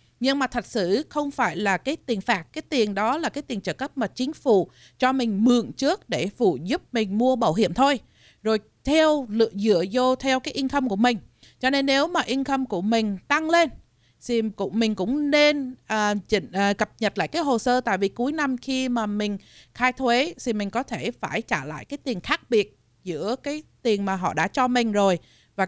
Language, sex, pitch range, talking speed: Vietnamese, female, 200-265 Hz, 215 wpm